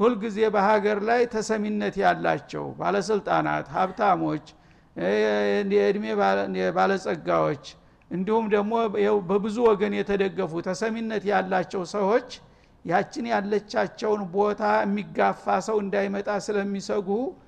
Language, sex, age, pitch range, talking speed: Amharic, male, 60-79, 180-220 Hz, 100 wpm